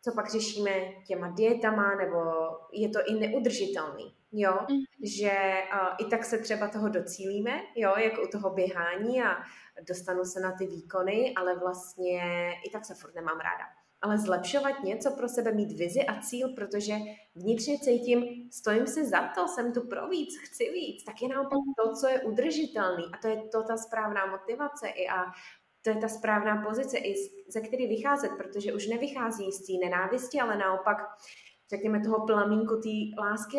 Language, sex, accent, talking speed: Czech, female, native, 175 wpm